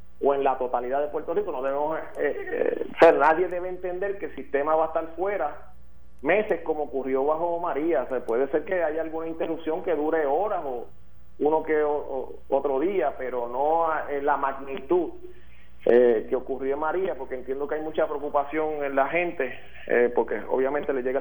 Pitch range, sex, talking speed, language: 130-170 Hz, male, 200 wpm, Spanish